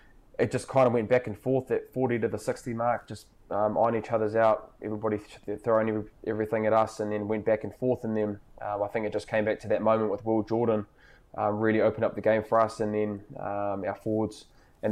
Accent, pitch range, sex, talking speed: Australian, 100-110 Hz, male, 240 wpm